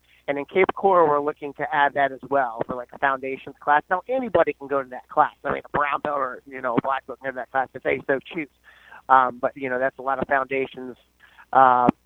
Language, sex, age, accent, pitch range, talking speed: English, male, 30-49, American, 130-150 Hz, 260 wpm